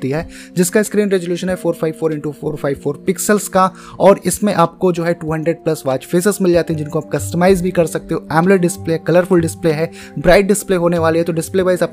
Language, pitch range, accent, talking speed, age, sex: Hindi, 160-190 Hz, native, 90 wpm, 20-39, male